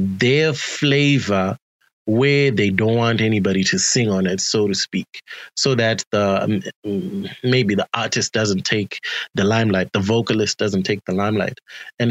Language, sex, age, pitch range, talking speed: English, male, 20-39, 100-125 Hz, 160 wpm